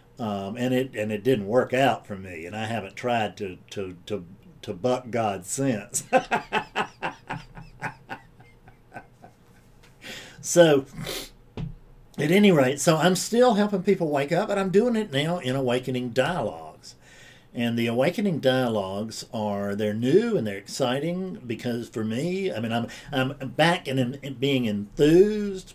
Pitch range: 110-145 Hz